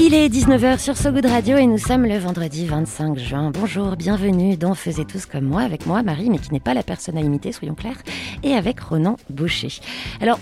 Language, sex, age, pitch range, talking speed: French, female, 30-49, 175-250 Hz, 225 wpm